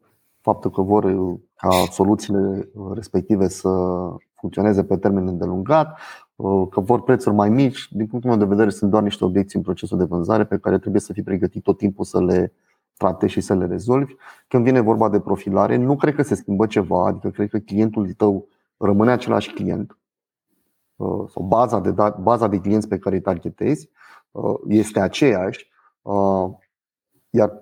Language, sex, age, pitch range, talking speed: Romanian, male, 30-49, 95-115 Hz, 160 wpm